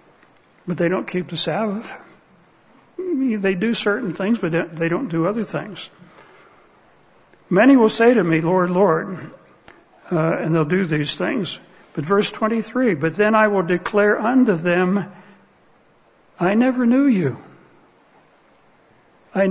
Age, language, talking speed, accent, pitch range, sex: 60-79, English, 135 wpm, American, 170-215 Hz, male